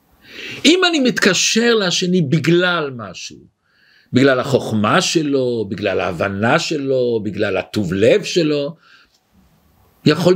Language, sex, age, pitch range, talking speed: Hebrew, male, 50-69, 130-185 Hz, 100 wpm